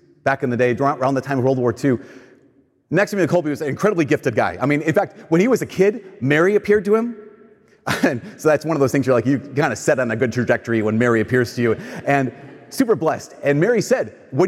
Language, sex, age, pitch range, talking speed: English, male, 30-49, 135-190 Hz, 250 wpm